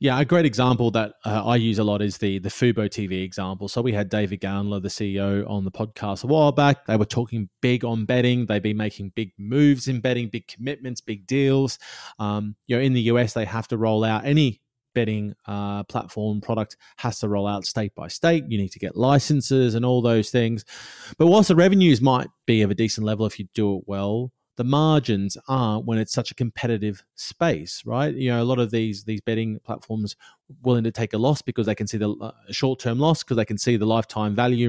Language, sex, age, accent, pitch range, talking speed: English, male, 30-49, Australian, 105-130 Hz, 230 wpm